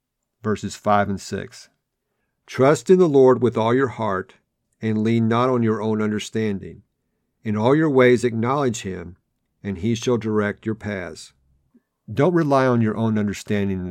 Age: 50-69